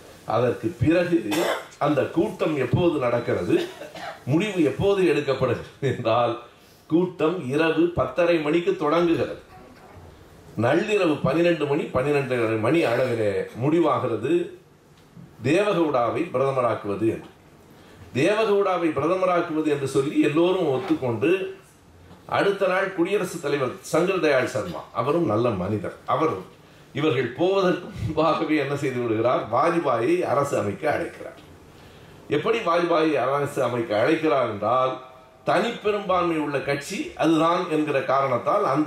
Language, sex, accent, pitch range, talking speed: Tamil, male, native, 135-180 Hz, 100 wpm